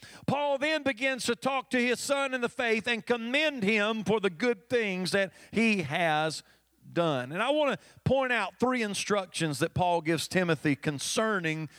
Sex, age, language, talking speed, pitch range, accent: male, 40-59, English, 180 wpm, 195-255 Hz, American